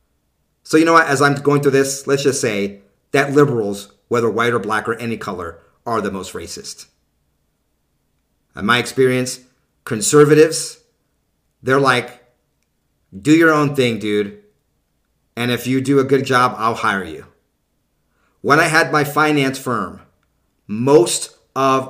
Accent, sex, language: American, male, English